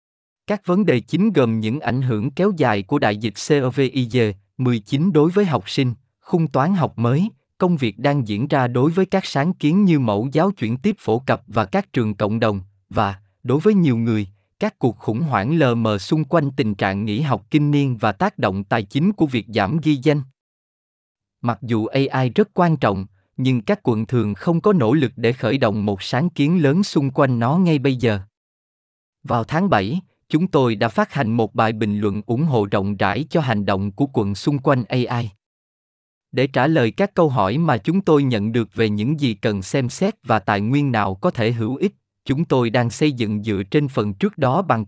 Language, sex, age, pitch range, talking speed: Vietnamese, male, 20-39, 110-155 Hz, 215 wpm